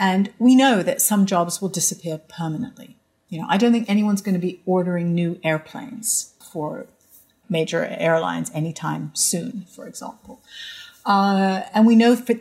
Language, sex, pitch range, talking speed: English, female, 175-225 Hz, 160 wpm